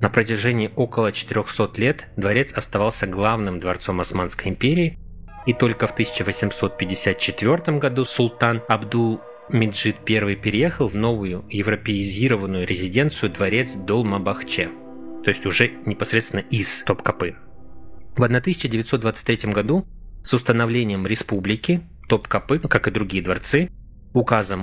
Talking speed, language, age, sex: 105 wpm, Russian, 20-39, male